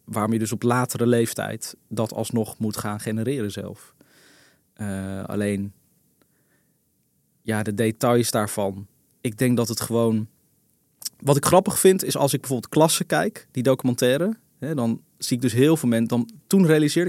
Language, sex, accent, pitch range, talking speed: Dutch, male, Dutch, 110-150 Hz, 160 wpm